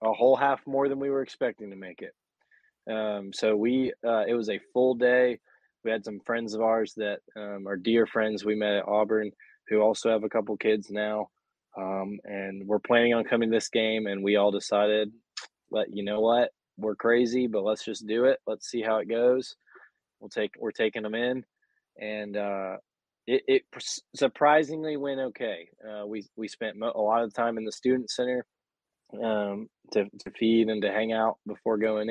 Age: 20-39